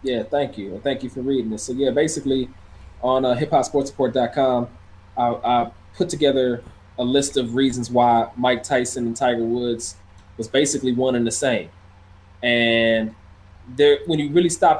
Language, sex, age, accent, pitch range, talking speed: English, male, 20-39, American, 105-135 Hz, 165 wpm